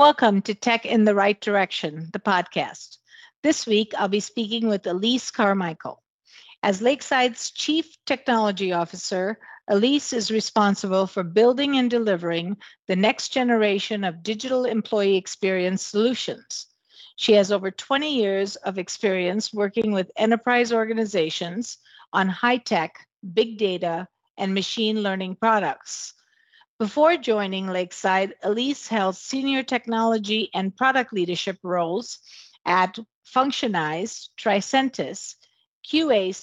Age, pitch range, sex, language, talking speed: 50-69, 190-240 Hz, female, English, 115 wpm